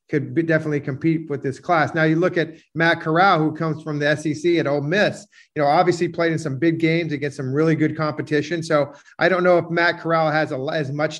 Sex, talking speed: male, 230 wpm